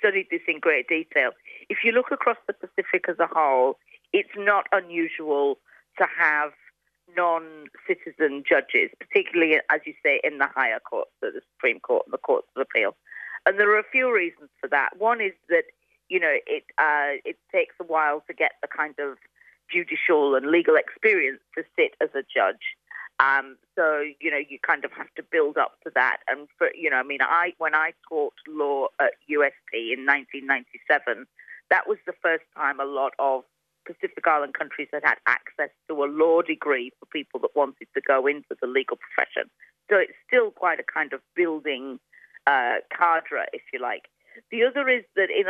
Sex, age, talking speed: female, 40-59, 190 wpm